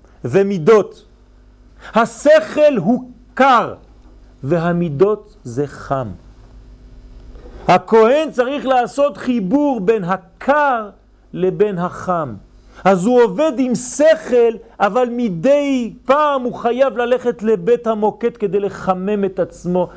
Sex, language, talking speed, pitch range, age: male, French, 95 wpm, 140-230 Hz, 40-59